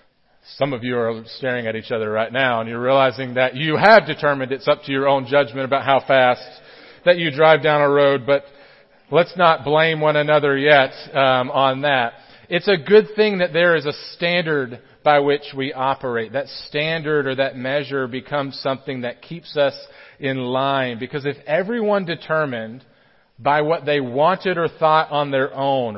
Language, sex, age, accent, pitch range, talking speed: English, male, 40-59, American, 130-160 Hz, 185 wpm